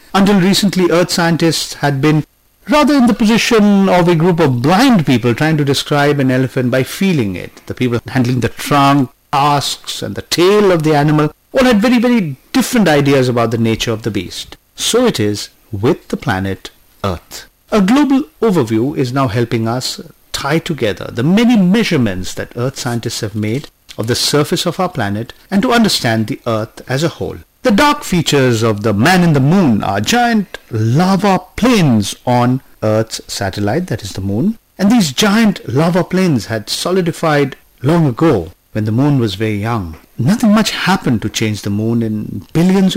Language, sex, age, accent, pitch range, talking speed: English, male, 50-69, Indian, 115-180 Hz, 180 wpm